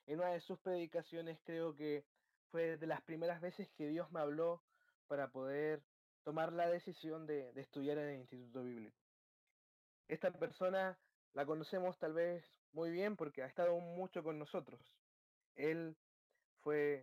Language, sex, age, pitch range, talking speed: Spanish, male, 20-39, 145-180 Hz, 155 wpm